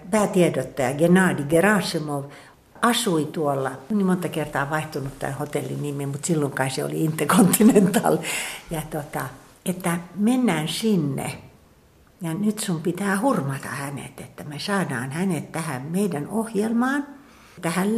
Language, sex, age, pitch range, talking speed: Finnish, female, 60-79, 150-200 Hz, 120 wpm